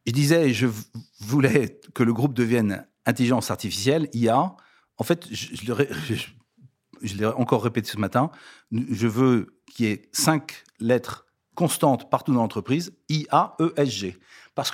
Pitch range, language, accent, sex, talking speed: 110-145 Hz, French, French, male, 150 wpm